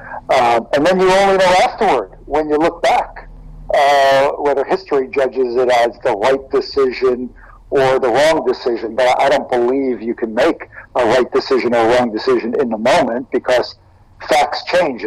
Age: 60-79